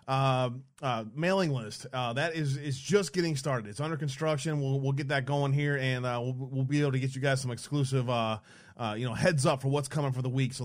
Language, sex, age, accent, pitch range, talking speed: English, male, 30-49, American, 125-150 Hz, 255 wpm